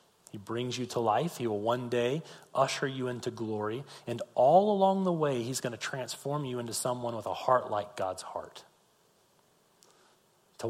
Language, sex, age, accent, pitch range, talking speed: English, male, 40-59, American, 115-165 Hz, 180 wpm